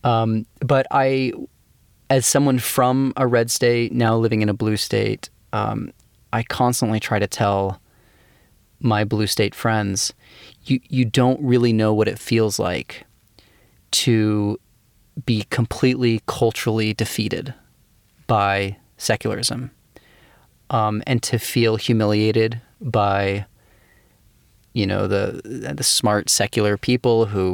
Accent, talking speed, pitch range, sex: American, 120 wpm, 105-120 Hz, male